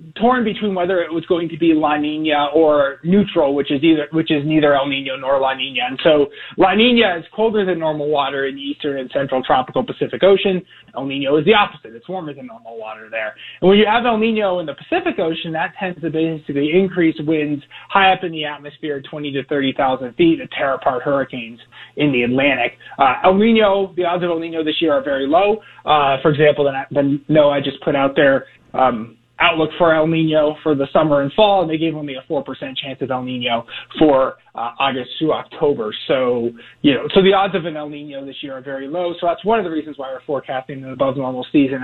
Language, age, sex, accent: English, 30-49, male, American